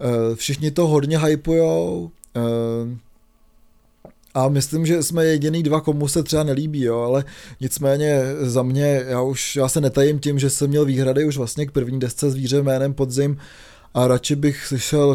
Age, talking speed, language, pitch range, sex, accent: 20-39, 160 wpm, Czech, 120-140 Hz, male, native